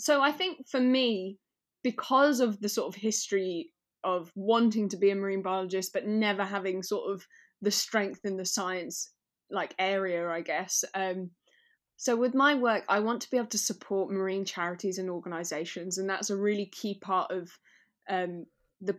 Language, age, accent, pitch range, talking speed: English, 10-29, British, 185-215 Hz, 180 wpm